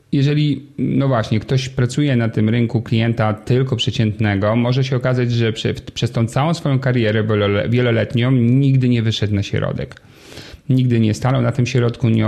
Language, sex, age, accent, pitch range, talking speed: Polish, male, 40-59, native, 110-135 Hz, 165 wpm